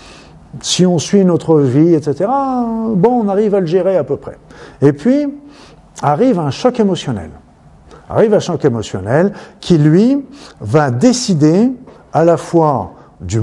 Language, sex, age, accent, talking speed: French, male, 50-69, French, 145 wpm